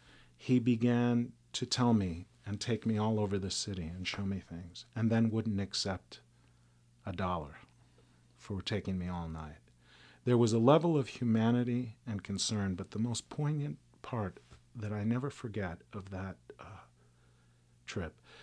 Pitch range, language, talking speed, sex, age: 90-125 Hz, English, 155 wpm, male, 40-59